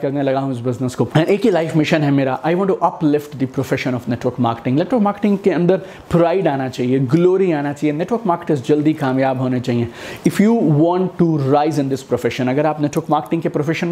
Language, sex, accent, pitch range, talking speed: Hindi, male, native, 140-190 Hz, 115 wpm